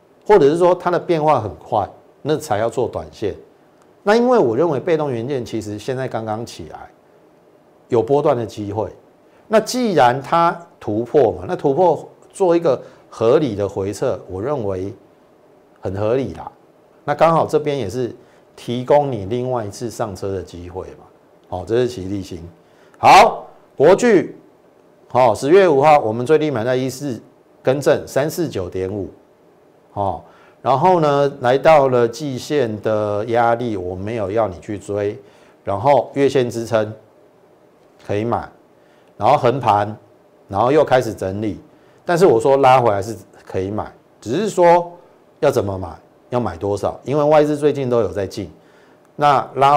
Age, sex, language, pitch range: 50-69, male, Chinese, 105-150 Hz